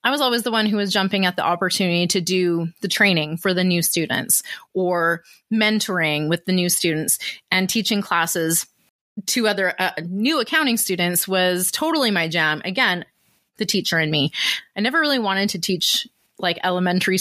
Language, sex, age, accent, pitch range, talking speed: English, female, 30-49, American, 175-220 Hz, 180 wpm